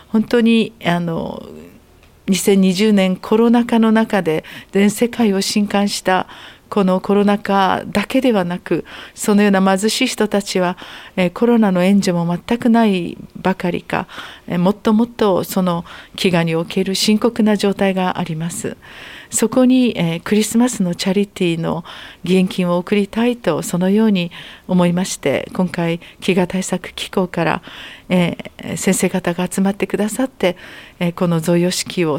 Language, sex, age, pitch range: Japanese, female, 50-69, 180-215 Hz